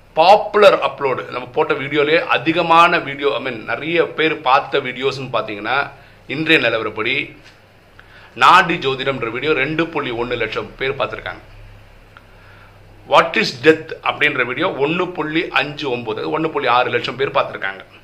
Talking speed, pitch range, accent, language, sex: 45 wpm, 105-160 Hz, native, Tamil, male